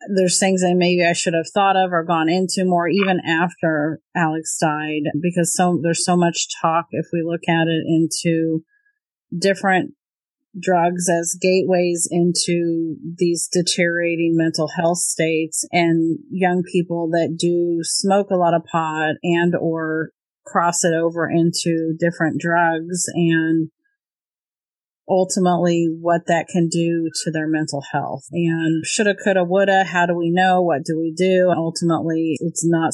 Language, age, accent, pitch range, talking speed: English, 40-59, American, 160-180 Hz, 150 wpm